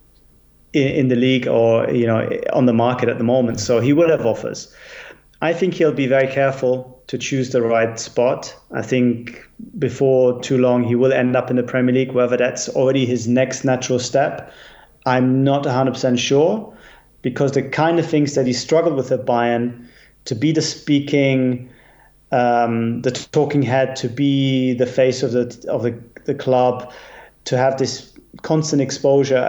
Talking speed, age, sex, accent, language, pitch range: 175 wpm, 30-49, male, German, English, 125-140 Hz